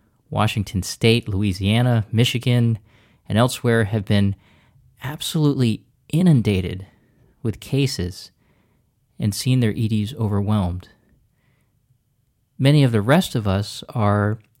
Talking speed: 100 wpm